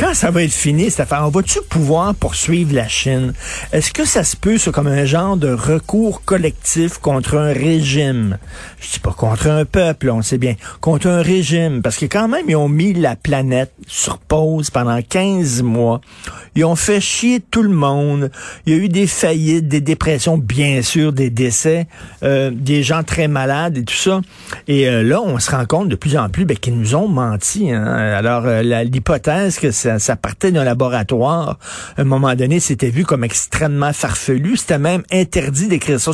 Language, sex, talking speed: French, male, 205 wpm